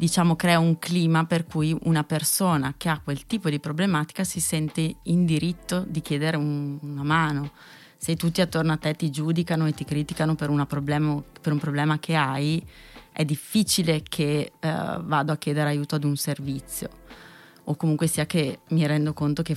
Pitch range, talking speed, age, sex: 145-160 Hz, 175 wpm, 20-39, female